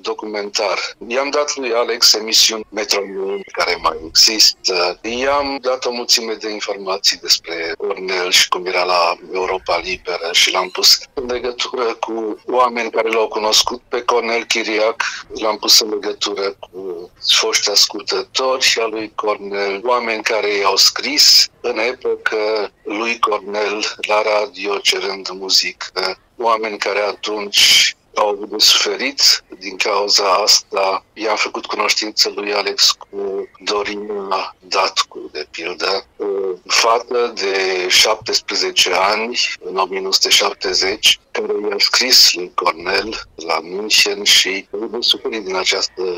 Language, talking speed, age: English, 125 wpm, 50-69